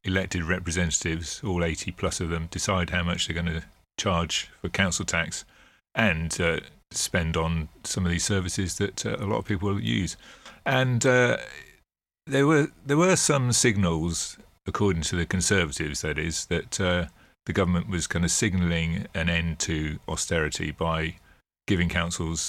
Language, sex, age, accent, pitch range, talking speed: English, male, 40-59, British, 80-95 Hz, 165 wpm